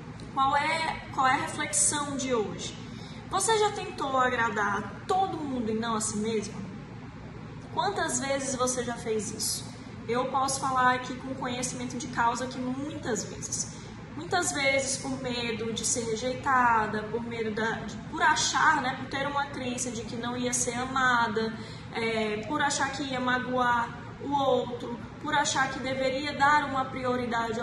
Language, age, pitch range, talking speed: Portuguese, 10-29, 225-285 Hz, 155 wpm